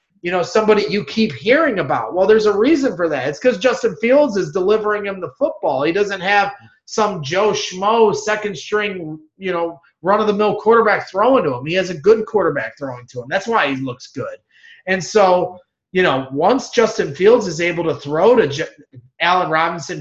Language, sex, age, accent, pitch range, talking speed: English, male, 30-49, American, 150-195 Hz, 190 wpm